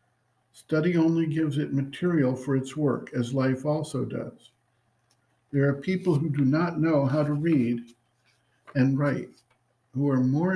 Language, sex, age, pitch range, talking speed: English, male, 60-79, 125-150 Hz, 155 wpm